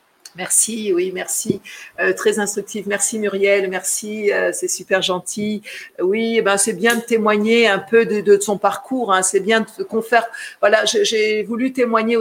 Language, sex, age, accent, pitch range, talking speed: French, female, 50-69, French, 195-250 Hz, 180 wpm